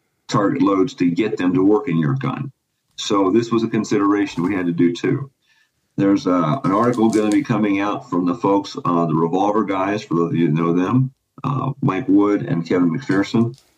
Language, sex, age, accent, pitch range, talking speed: English, male, 50-69, American, 95-130 Hz, 215 wpm